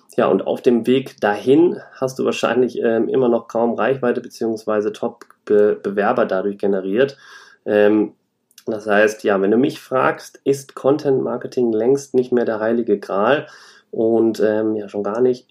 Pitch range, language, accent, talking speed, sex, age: 105-130 Hz, German, German, 155 wpm, male, 30-49